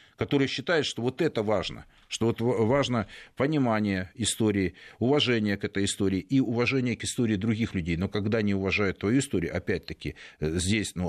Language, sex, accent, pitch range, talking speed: Russian, male, native, 95-115 Hz, 160 wpm